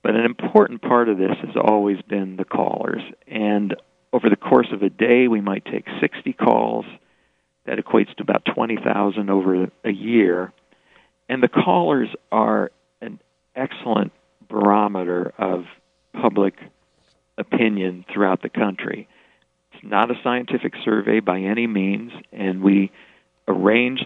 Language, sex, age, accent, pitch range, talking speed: English, male, 50-69, American, 95-110 Hz, 135 wpm